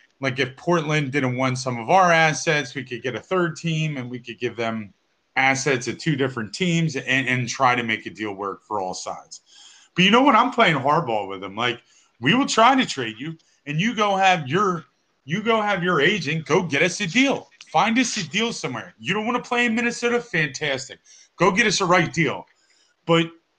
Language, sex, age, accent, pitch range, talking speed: English, male, 30-49, American, 130-185 Hz, 220 wpm